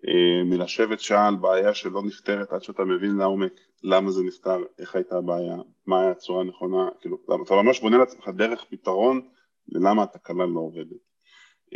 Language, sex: Hebrew, male